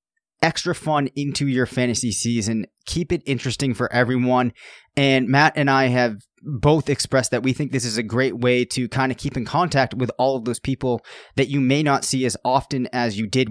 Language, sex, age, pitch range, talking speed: English, male, 20-39, 125-140 Hz, 210 wpm